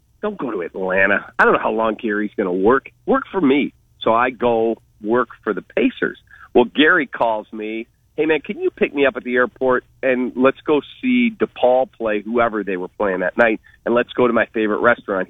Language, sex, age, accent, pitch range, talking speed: English, male, 40-59, American, 110-135 Hz, 220 wpm